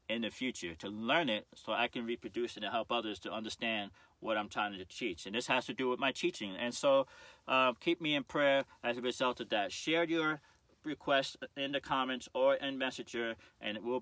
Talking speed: 225 wpm